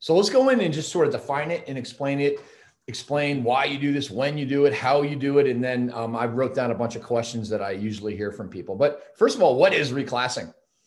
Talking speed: 270 wpm